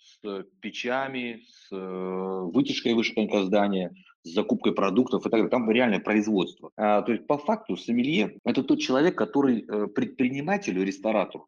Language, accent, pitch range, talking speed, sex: Russian, native, 105-165 Hz, 130 wpm, male